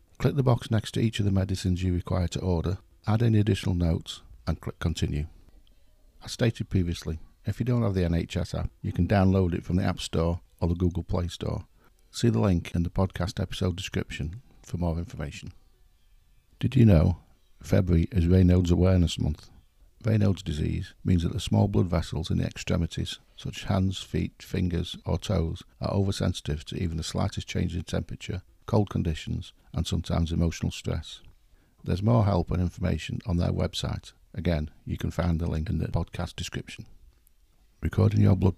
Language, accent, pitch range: English, British, 85-100 Hz